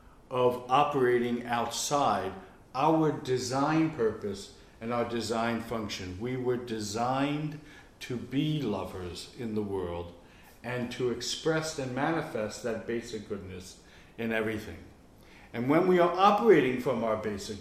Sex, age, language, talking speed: male, 60-79, English, 125 wpm